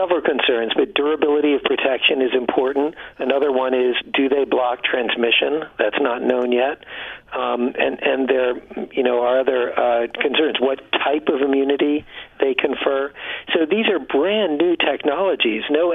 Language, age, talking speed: English, 50-69, 155 wpm